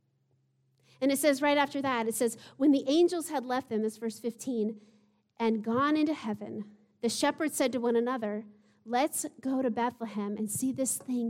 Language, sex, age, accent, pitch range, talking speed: English, female, 40-59, American, 210-265 Hz, 185 wpm